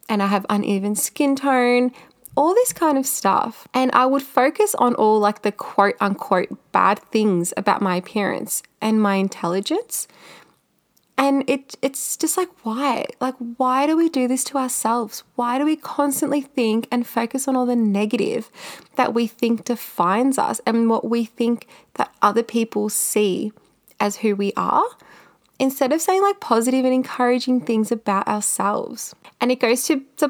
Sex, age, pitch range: female, 20-39, 200-260 Hz